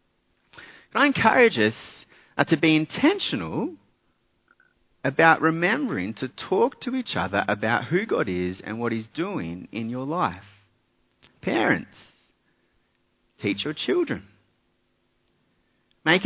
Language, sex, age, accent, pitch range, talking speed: English, male, 40-59, Australian, 110-165 Hz, 110 wpm